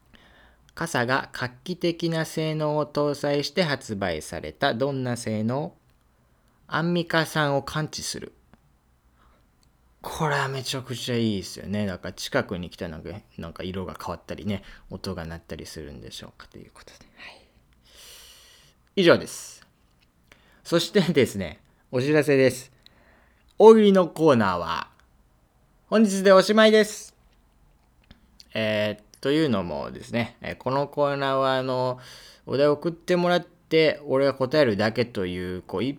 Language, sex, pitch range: Japanese, male, 90-150 Hz